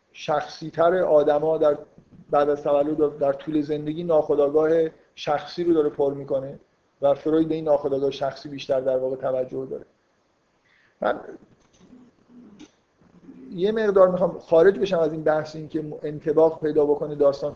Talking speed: 135 wpm